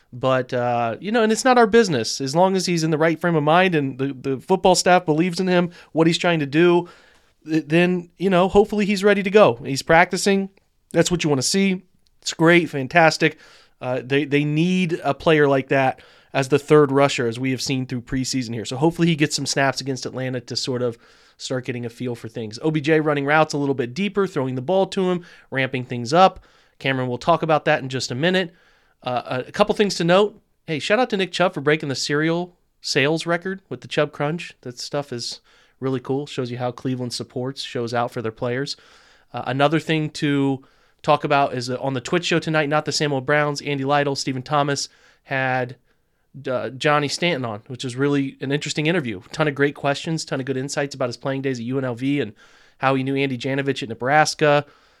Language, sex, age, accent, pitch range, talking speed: English, male, 30-49, American, 130-170 Hz, 220 wpm